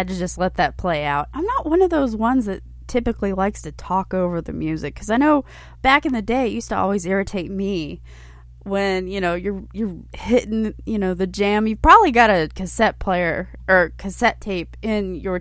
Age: 20-39